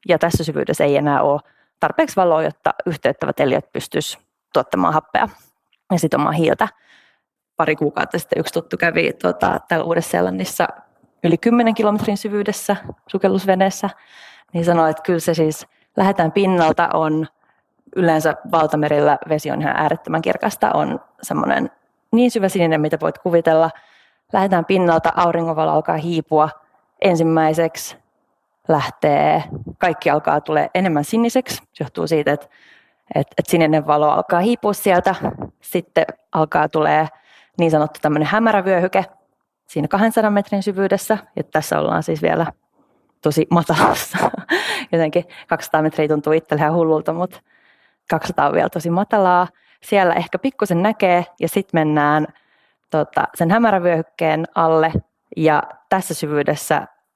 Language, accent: Finnish, native